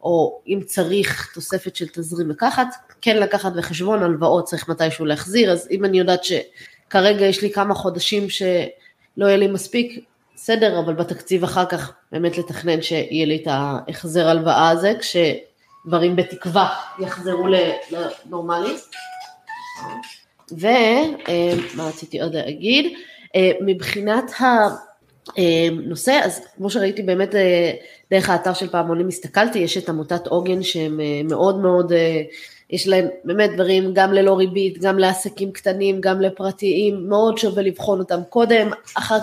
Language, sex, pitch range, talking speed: Hebrew, female, 175-210 Hz, 130 wpm